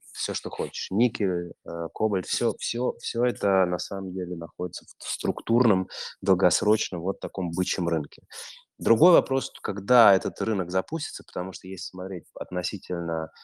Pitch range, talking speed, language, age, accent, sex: 90-100 Hz, 140 wpm, Russian, 20-39, native, male